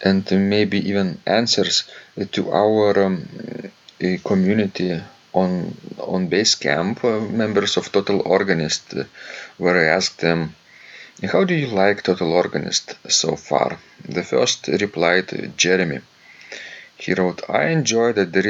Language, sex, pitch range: English, male, 85-105 Hz